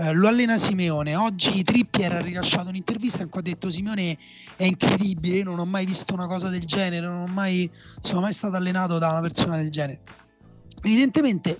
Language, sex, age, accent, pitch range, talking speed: Italian, male, 30-49, native, 160-195 Hz, 190 wpm